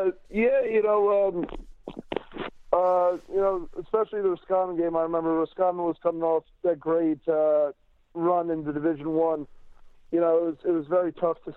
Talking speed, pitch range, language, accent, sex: 170 wpm, 145-165 Hz, English, American, male